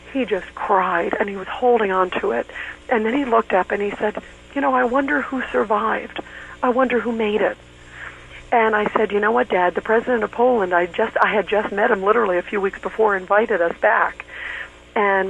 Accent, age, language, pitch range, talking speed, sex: American, 50-69, English, 180-210 Hz, 220 wpm, female